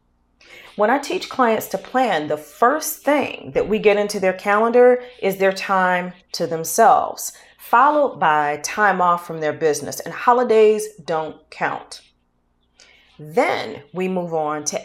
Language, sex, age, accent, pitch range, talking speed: English, female, 40-59, American, 150-205 Hz, 145 wpm